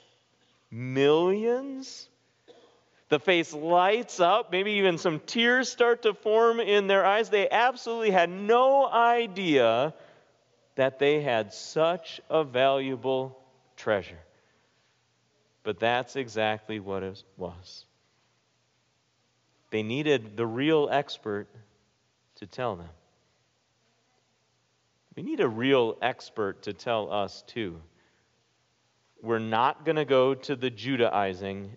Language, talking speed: English, 110 wpm